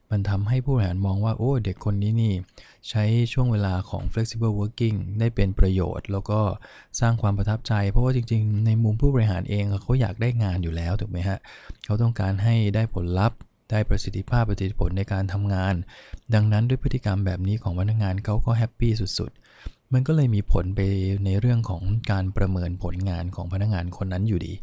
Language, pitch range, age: English, 95-115 Hz, 20-39